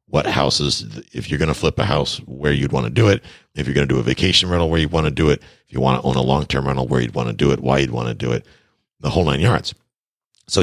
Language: English